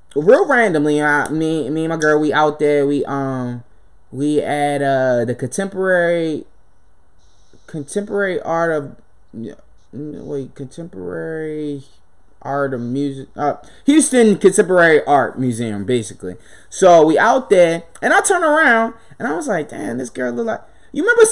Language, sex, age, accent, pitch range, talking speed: English, male, 20-39, American, 120-185 Hz, 145 wpm